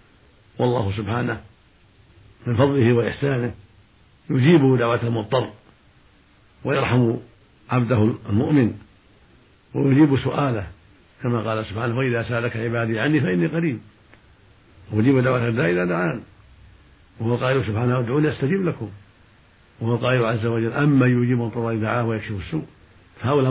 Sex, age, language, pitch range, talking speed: male, 70-89, Arabic, 105-130 Hz, 105 wpm